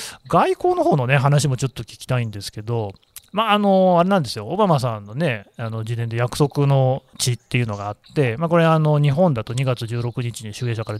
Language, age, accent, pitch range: Japanese, 30-49, native, 115-170 Hz